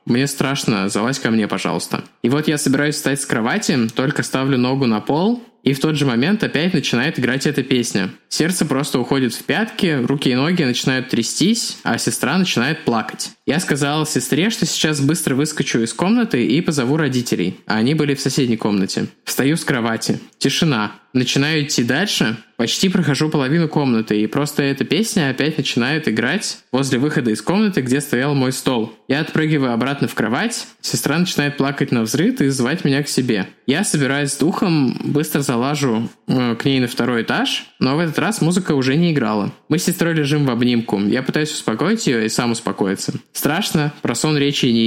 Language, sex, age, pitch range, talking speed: Russian, male, 20-39, 125-160 Hz, 185 wpm